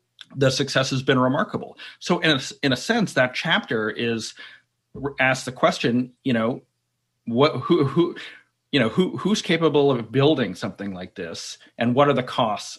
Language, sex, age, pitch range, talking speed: English, male, 30-49, 115-140 Hz, 170 wpm